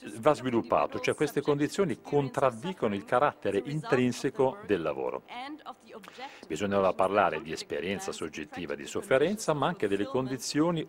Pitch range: 105-170 Hz